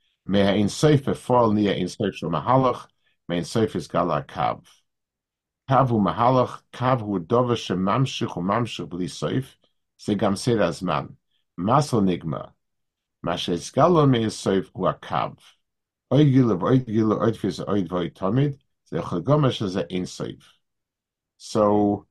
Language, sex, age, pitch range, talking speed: English, male, 50-69, 95-130 Hz, 115 wpm